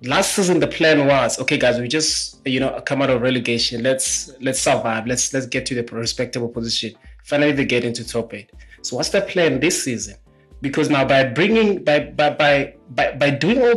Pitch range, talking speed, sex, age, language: 115-145 Hz, 205 wpm, male, 20-39, English